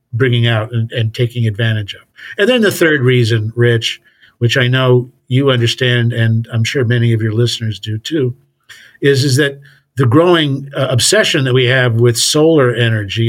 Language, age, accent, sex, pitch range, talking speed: English, 50-69, American, male, 115-135 Hz, 180 wpm